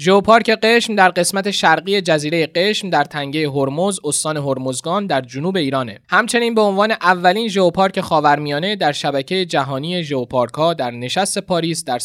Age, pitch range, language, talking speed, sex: 20-39, 150-195 Hz, Persian, 150 wpm, male